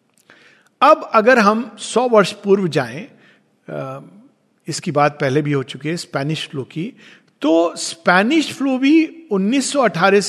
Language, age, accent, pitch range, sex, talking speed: Hindi, 50-69, native, 165-250 Hz, male, 130 wpm